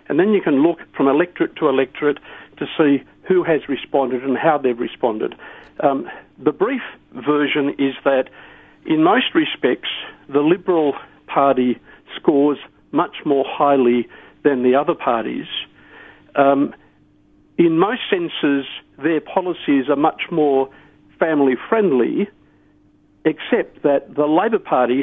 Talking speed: 125 wpm